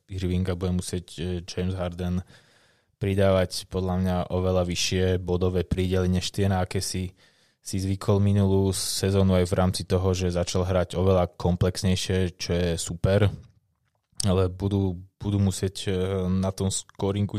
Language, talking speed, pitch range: Slovak, 135 wpm, 95-110 Hz